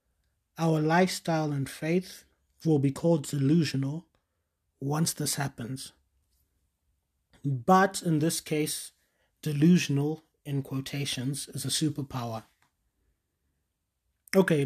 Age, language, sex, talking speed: 30-49, English, male, 90 wpm